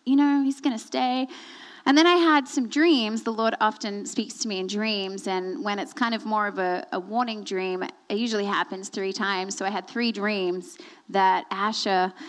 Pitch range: 215-325 Hz